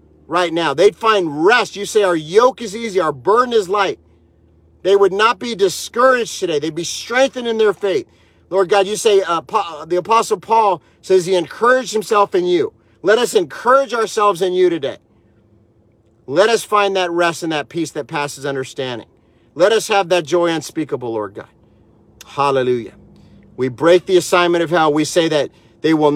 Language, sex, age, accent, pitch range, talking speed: English, male, 40-59, American, 145-220 Hz, 180 wpm